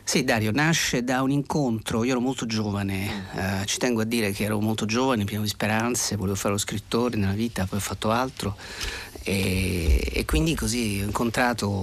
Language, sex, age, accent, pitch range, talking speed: Italian, male, 40-59, native, 100-120 Hz, 195 wpm